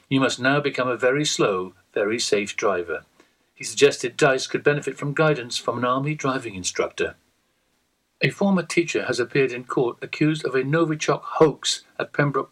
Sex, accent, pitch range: male, British, 120-155 Hz